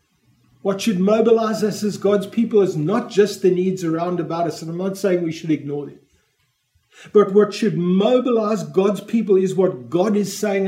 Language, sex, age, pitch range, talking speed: English, male, 50-69, 185-220 Hz, 190 wpm